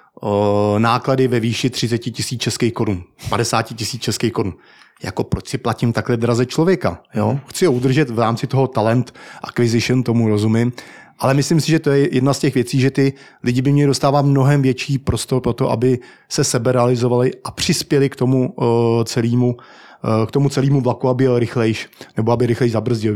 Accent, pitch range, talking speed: native, 115-140 Hz, 180 wpm